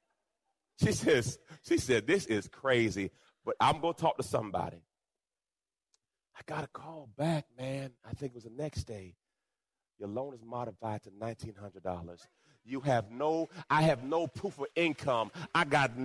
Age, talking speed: 40-59, 160 wpm